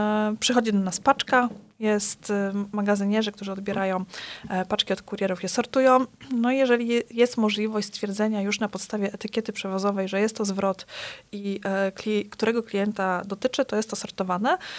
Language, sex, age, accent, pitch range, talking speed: Polish, female, 20-39, native, 200-225 Hz, 145 wpm